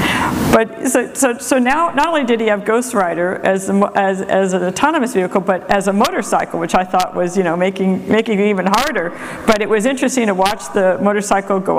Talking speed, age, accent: 220 wpm, 50-69, American